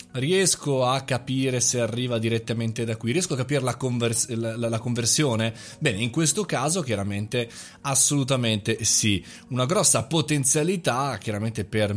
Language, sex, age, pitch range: Italian, male, 20-39, 105-140 Hz